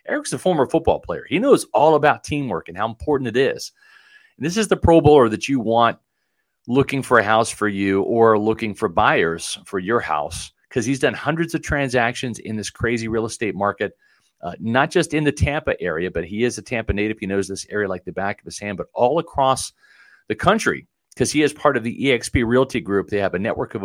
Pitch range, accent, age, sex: 100-140 Hz, American, 40-59, male